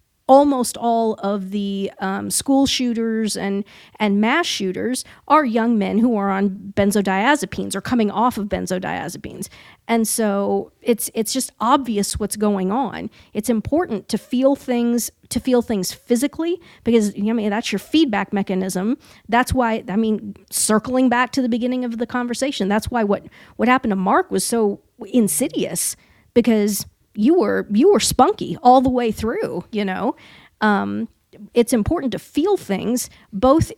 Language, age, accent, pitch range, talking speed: English, 40-59, American, 205-255 Hz, 160 wpm